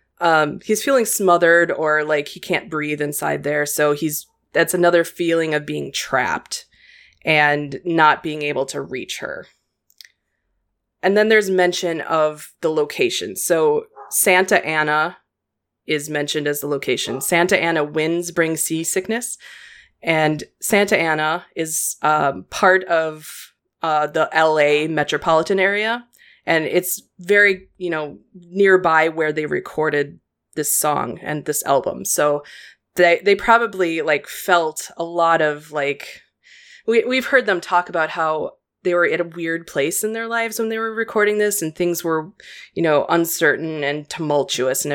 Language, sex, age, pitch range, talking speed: English, female, 20-39, 150-185 Hz, 150 wpm